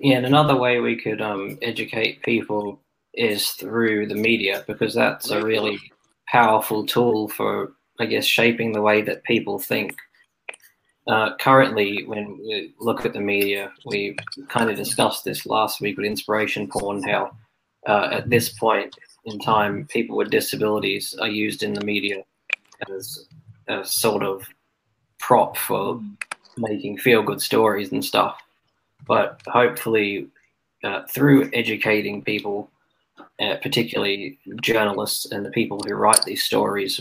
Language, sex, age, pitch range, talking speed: English, male, 20-39, 105-125 Hz, 145 wpm